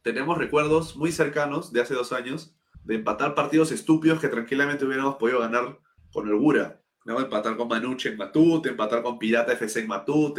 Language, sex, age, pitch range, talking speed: Spanish, male, 20-39, 110-155 Hz, 180 wpm